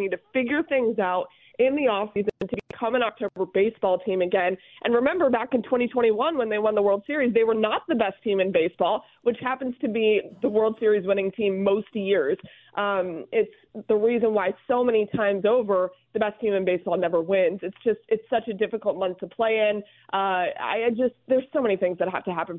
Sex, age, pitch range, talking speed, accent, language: female, 20-39, 190-245 Hz, 225 wpm, American, English